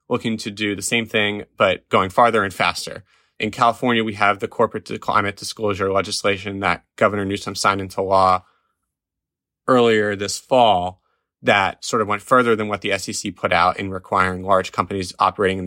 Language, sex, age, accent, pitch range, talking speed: English, male, 20-39, American, 95-110 Hz, 175 wpm